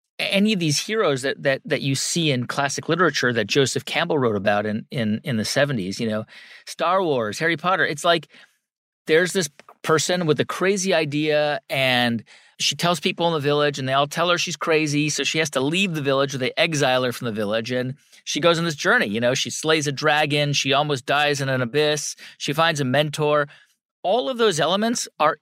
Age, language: 40-59, English